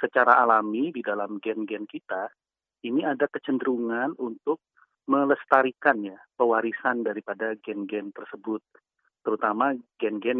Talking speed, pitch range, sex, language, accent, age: 100 wpm, 110-140 Hz, male, Indonesian, native, 40-59